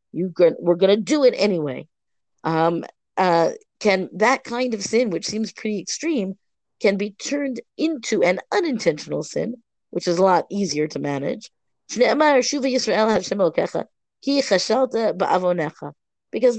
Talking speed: 120 wpm